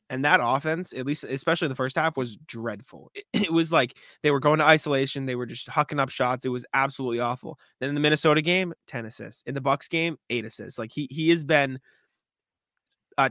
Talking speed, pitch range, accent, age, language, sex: 220 wpm, 125-150 Hz, American, 20-39, English, male